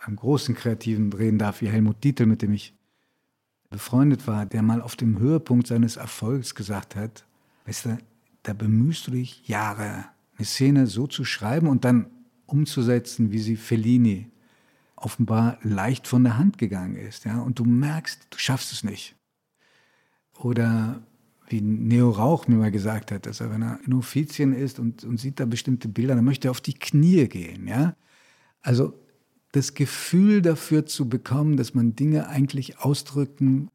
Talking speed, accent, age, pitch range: 170 wpm, German, 50-69, 110-140 Hz